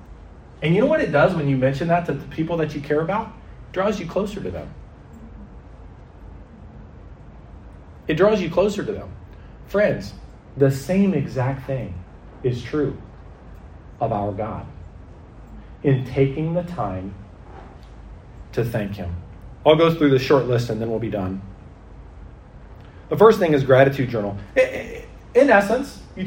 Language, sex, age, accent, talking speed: English, male, 40-59, American, 150 wpm